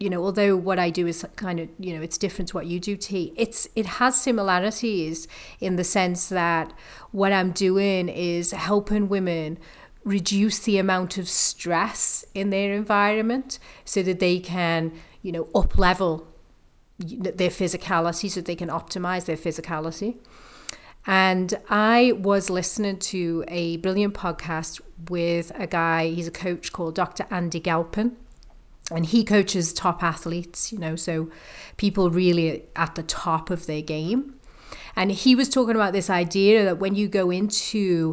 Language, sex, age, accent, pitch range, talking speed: English, female, 30-49, British, 170-200 Hz, 160 wpm